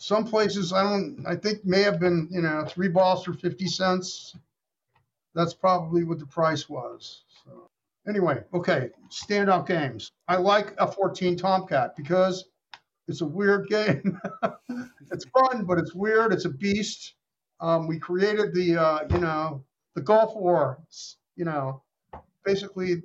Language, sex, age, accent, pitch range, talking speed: English, male, 50-69, American, 165-200 Hz, 155 wpm